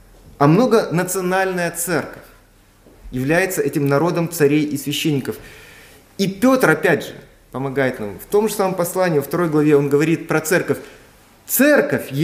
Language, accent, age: Russian, native, 30-49